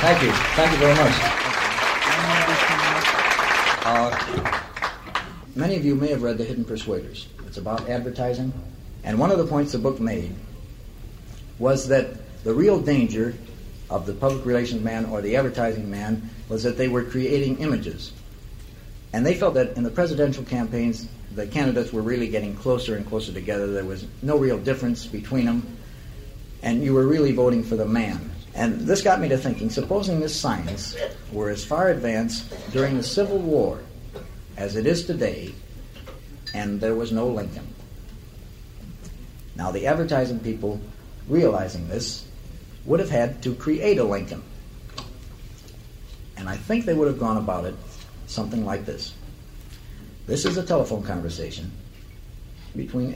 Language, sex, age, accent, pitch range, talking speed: English, male, 60-79, American, 105-130 Hz, 155 wpm